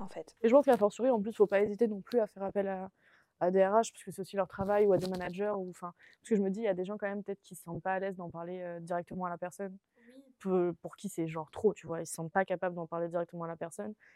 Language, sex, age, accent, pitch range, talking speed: French, female, 20-39, French, 165-200 Hz, 345 wpm